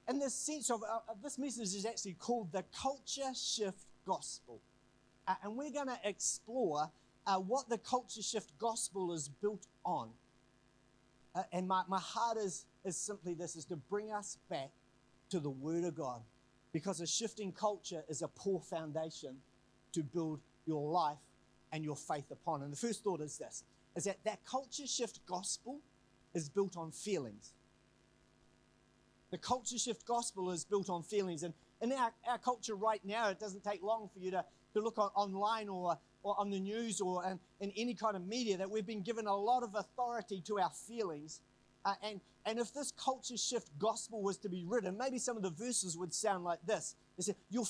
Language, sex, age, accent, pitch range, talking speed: English, male, 40-59, Australian, 165-225 Hz, 190 wpm